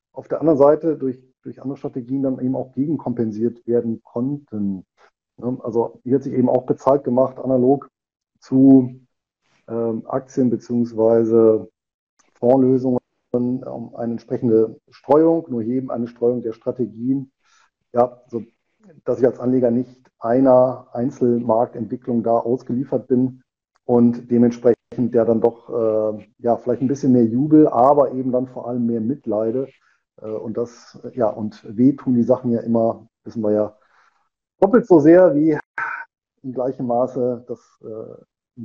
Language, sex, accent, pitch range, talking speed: German, male, German, 115-135 Hz, 135 wpm